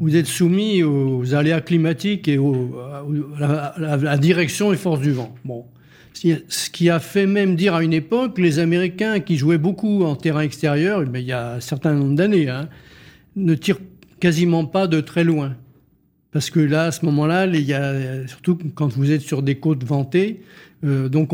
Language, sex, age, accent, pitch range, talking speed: French, male, 50-69, French, 145-180 Hz, 195 wpm